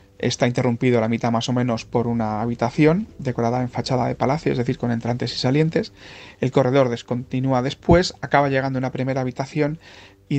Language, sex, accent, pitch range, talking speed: Spanish, male, Spanish, 115-135 Hz, 190 wpm